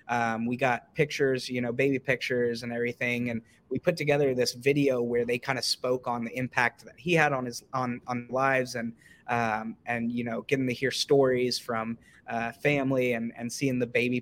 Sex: male